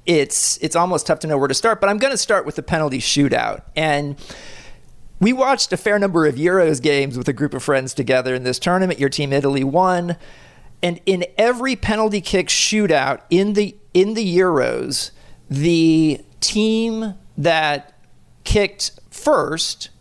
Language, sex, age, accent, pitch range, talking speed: English, male, 40-59, American, 140-185 Hz, 170 wpm